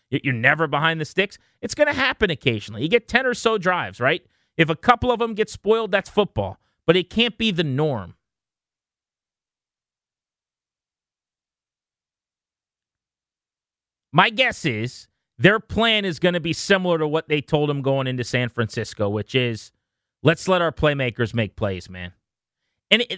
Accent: American